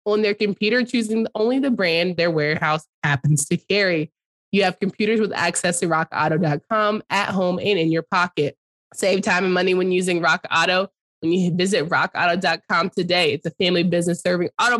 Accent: American